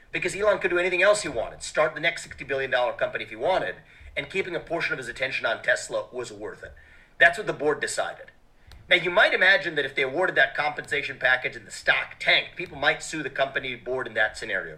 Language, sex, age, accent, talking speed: English, male, 40-59, American, 235 wpm